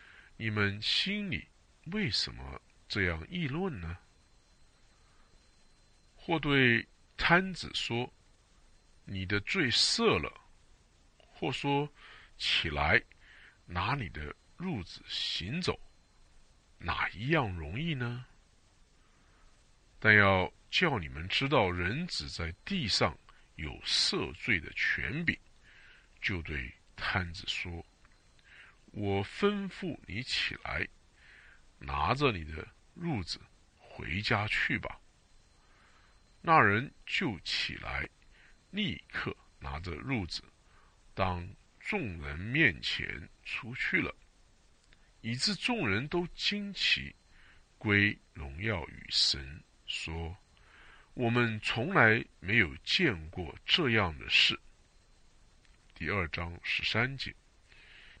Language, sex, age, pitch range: English, male, 50-69, 85-125 Hz